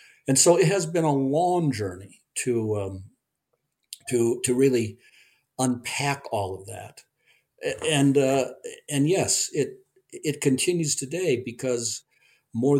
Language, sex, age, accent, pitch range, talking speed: English, male, 60-79, American, 110-145 Hz, 125 wpm